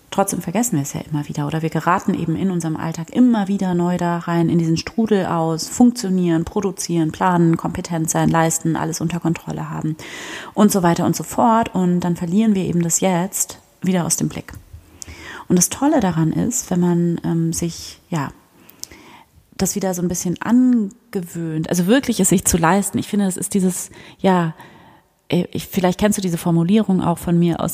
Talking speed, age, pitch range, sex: 190 wpm, 30-49, 160-190 Hz, female